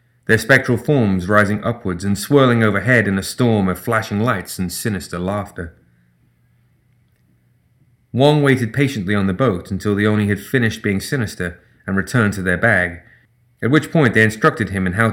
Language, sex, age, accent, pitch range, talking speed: English, male, 30-49, British, 100-125 Hz, 170 wpm